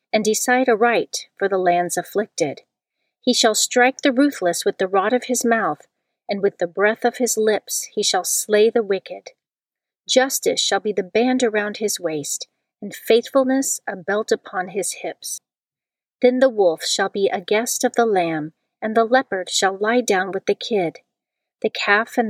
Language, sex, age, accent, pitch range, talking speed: English, female, 40-59, American, 190-240 Hz, 180 wpm